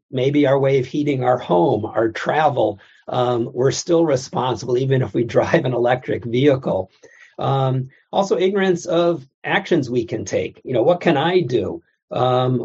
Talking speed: 165 wpm